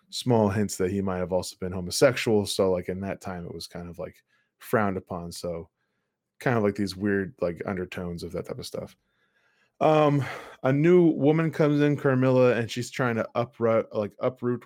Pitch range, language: 95-130 Hz, English